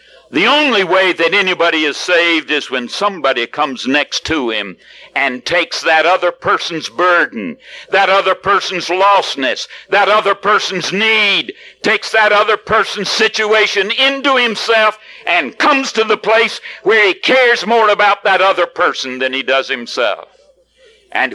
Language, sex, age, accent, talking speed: English, male, 60-79, American, 150 wpm